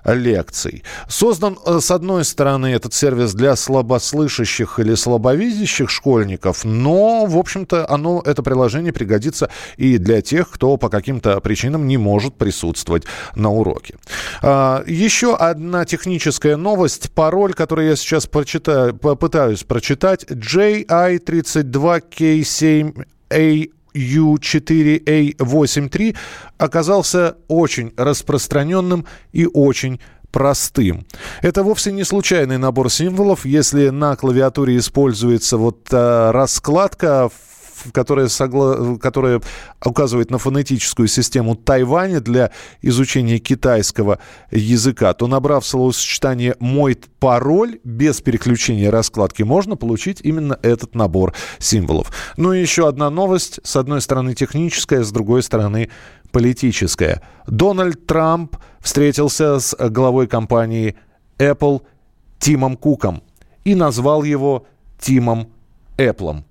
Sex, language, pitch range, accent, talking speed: male, Russian, 120-155 Hz, native, 105 wpm